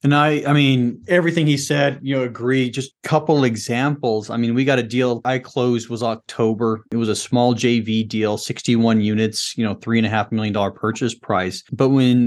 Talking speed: 195 wpm